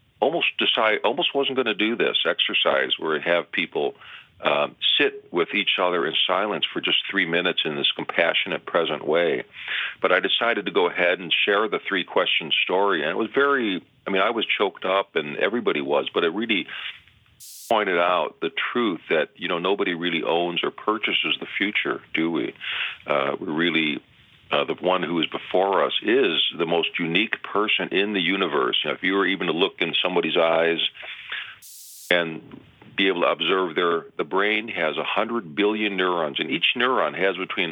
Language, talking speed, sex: English, 185 wpm, male